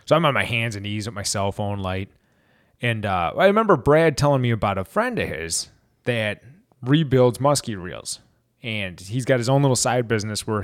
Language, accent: English, American